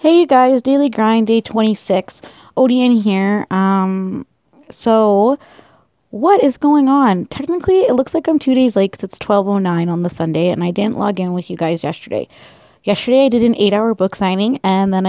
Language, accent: English, American